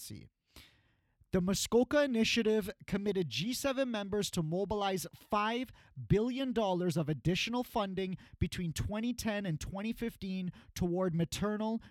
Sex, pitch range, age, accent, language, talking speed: male, 155-215 Hz, 30-49, American, English, 100 wpm